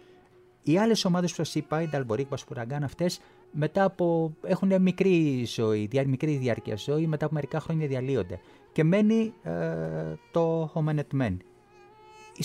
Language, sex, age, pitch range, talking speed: Greek, male, 30-49, 130-180 Hz, 135 wpm